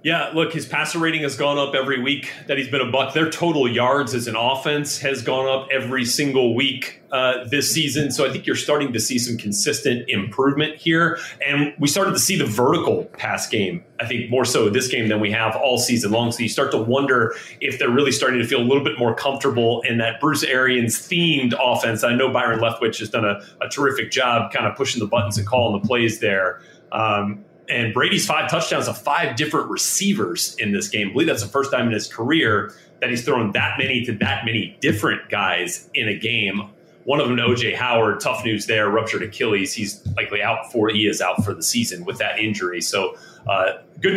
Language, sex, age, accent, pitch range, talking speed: English, male, 30-49, American, 115-145 Hz, 225 wpm